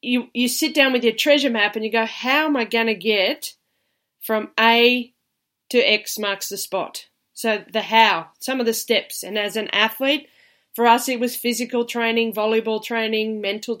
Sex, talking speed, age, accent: female, 185 wpm, 20-39, Australian